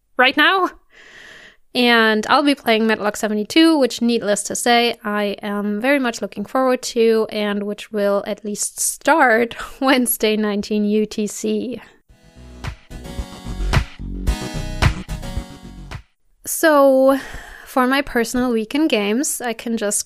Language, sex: English, female